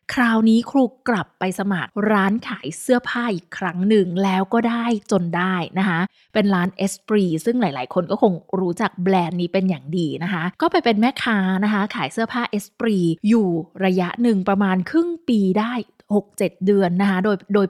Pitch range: 190-240 Hz